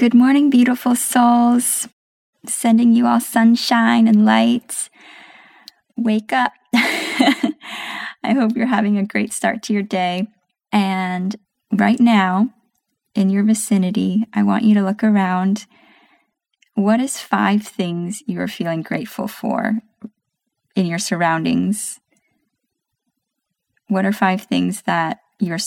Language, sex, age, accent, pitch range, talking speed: English, female, 20-39, American, 185-230 Hz, 120 wpm